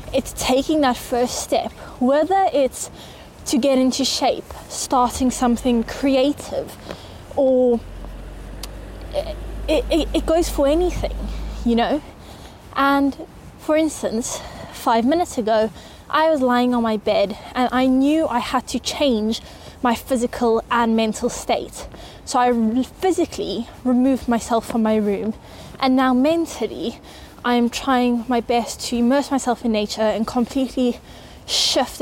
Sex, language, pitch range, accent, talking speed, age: female, English, 230-270 Hz, British, 130 wpm, 20-39